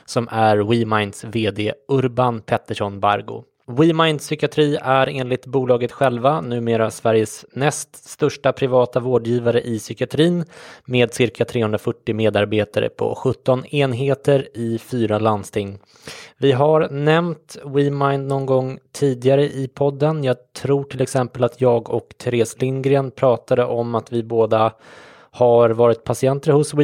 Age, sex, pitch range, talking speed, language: 20-39, male, 115-140 Hz, 130 wpm, English